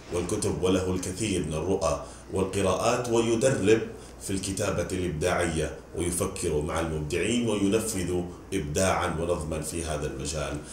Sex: male